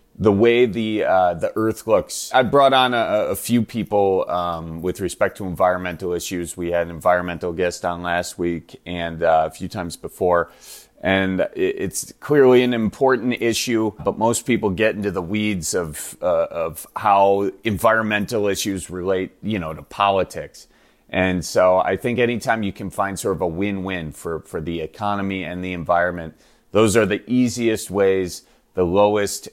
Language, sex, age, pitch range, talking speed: English, male, 30-49, 90-110 Hz, 170 wpm